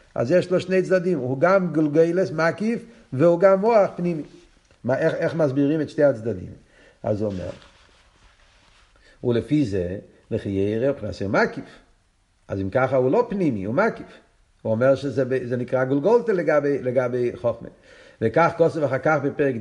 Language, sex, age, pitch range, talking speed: Hebrew, male, 50-69, 125-175 Hz, 160 wpm